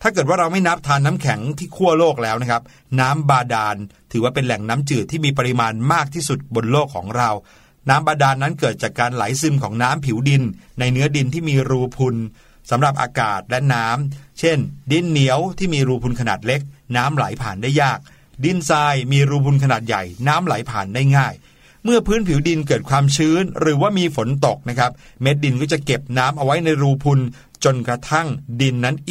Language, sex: Thai, male